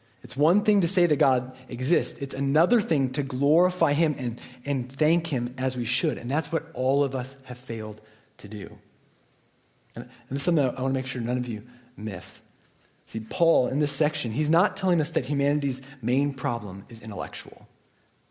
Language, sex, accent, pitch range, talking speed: English, male, American, 110-140 Hz, 195 wpm